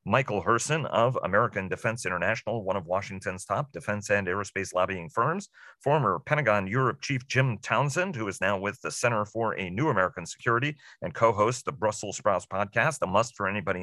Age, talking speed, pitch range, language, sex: 40-59, 185 wpm, 95-115 Hz, English, male